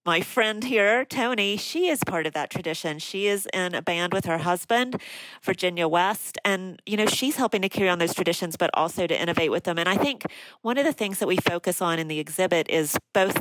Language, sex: English, female